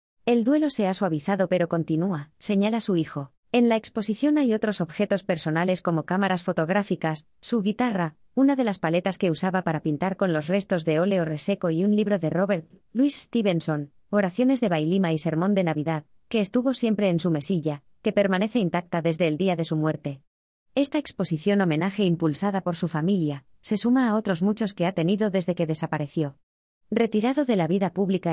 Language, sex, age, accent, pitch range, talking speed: Spanish, female, 20-39, Spanish, 165-210 Hz, 185 wpm